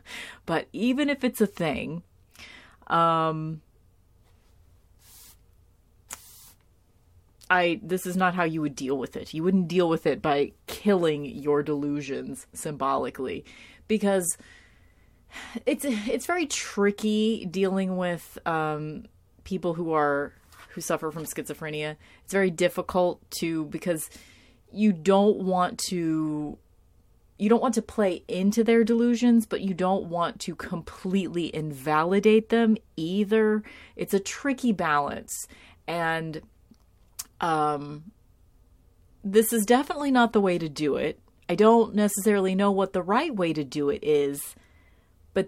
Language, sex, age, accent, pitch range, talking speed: English, female, 30-49, American, 150-200 Hz, 125 wpm